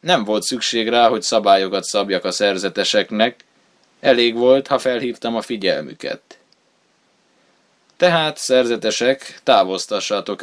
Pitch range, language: 105-130 Hz, Hungarian